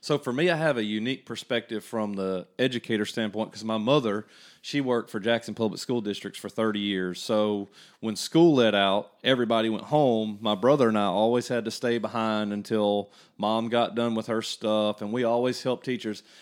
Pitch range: 110-135 Hz